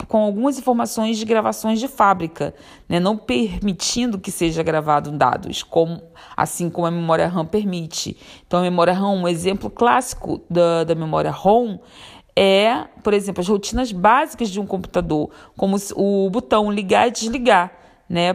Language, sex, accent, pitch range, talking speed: Portuguese, female, Brazilian, 170-215 Hz, 160 wpm